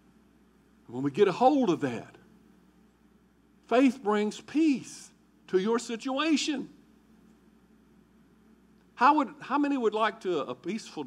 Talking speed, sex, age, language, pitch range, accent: 120 wpm, male, 50-69, English, 160-230 Hz, American